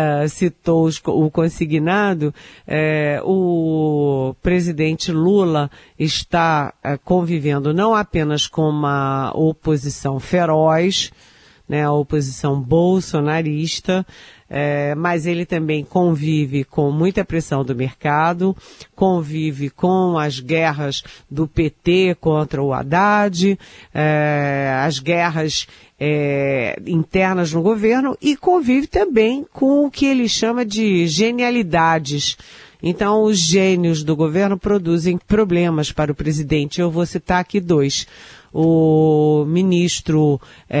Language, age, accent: Portuguese, 50-69, Brazilian